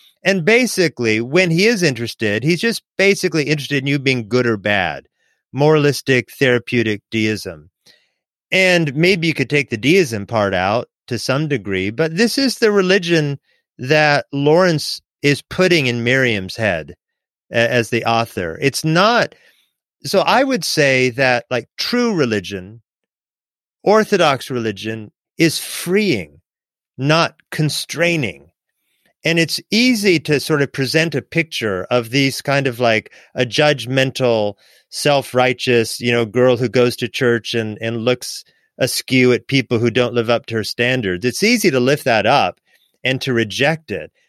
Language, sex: English, male